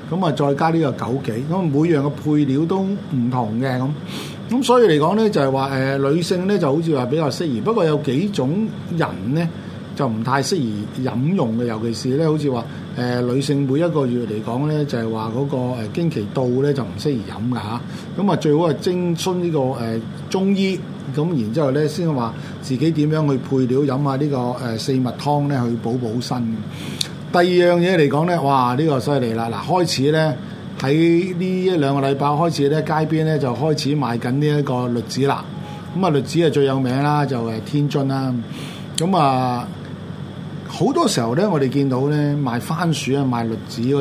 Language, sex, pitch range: Chinese, male, 130-165 Hz